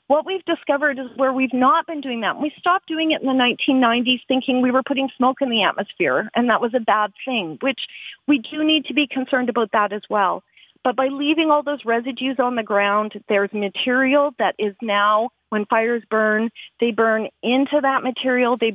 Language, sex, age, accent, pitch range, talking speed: English, female, 40-59, American, 220-275 Hz, 210 wpm